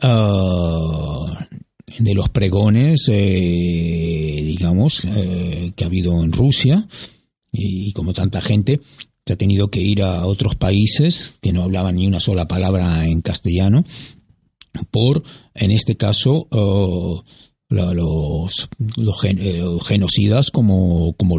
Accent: Spanish